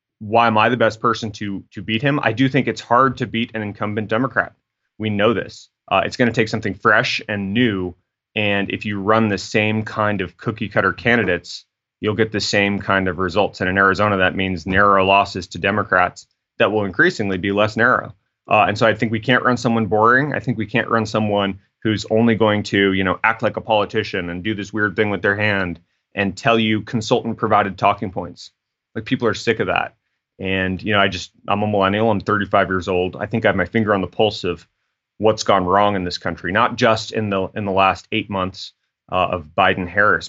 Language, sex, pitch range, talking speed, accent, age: English, male, 95-115 Hz, 230 wpm, American, 30-49